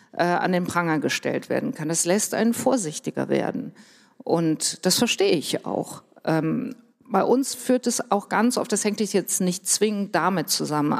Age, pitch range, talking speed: 50-69, 170-215 Hz, 165 wpm